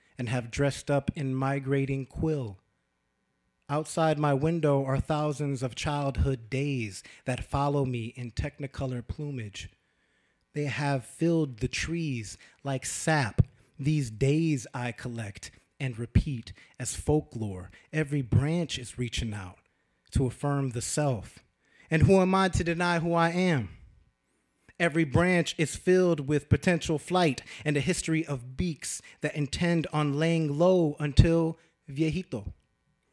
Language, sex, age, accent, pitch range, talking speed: English, male, 30-49, American, 120-155 Hz, 130 wpm